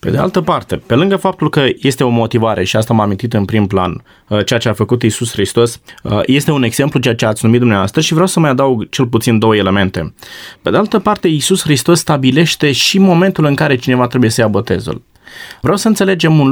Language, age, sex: Romanian, 20-39, male